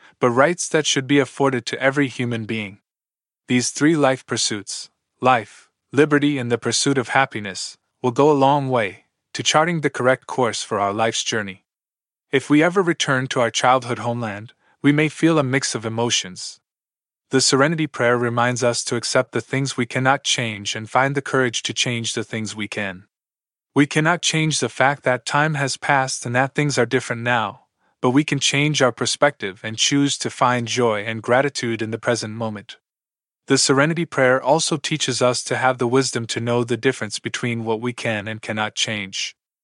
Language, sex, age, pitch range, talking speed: English, male, 20-39, 115-140 Hz, 190 wpm